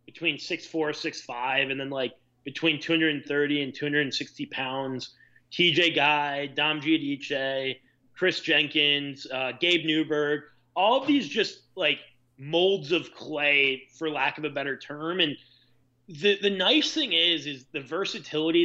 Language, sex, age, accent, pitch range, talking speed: English, male, 30-49, American, 135-165 Hz, 140 wpm